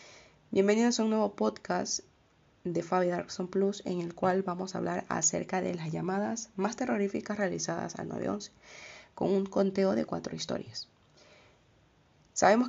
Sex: female